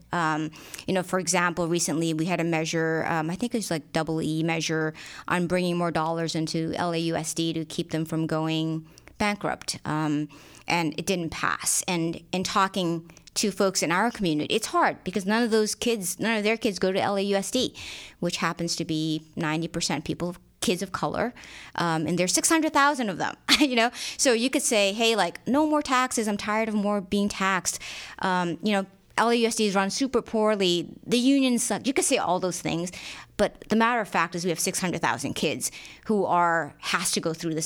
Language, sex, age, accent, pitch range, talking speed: English, female, 30-49, American, 165-205 Hz, 200 wpm